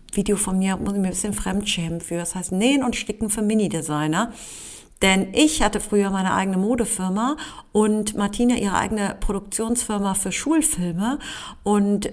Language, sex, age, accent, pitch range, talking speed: German, female, 50-69, German, 185-215 Hz, 160 wpm